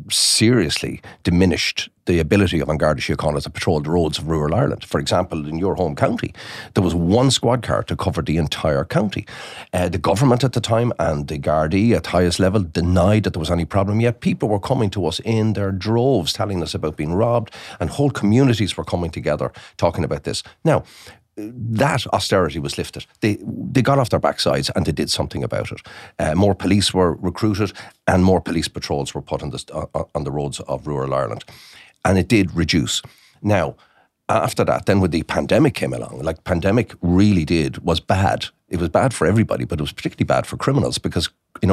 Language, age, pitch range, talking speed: English, 40-59, 80-110 Hz, 205 wpm